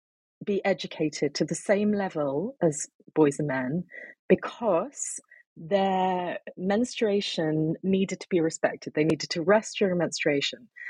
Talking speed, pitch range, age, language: 125 wpm, 155-205 Hz, 30-49, English